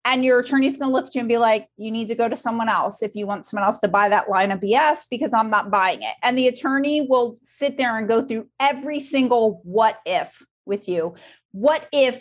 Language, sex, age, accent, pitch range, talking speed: English, female, 30-49, American, 205-255 Hz, 245 wpm